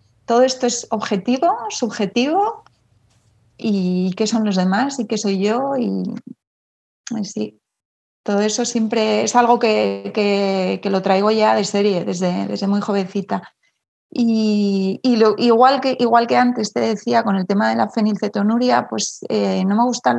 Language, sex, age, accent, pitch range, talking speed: Spanish, female, 30-49, Spanish, 195-230 Hz, 155 wpm